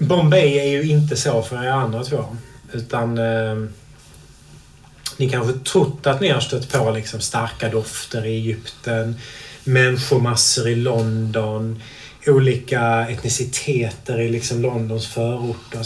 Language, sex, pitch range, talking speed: Swedish, male, 115-140 Hz, 125 wpm